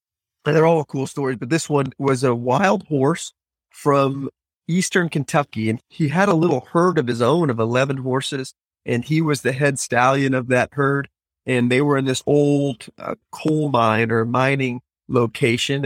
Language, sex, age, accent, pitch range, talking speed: English, male, 30-49, American, 130-160 Hz, 180 wpm